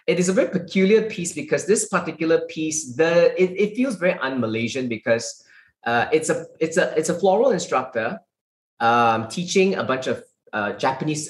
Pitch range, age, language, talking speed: 120-175 Hz, 20-39, English, 175 wpm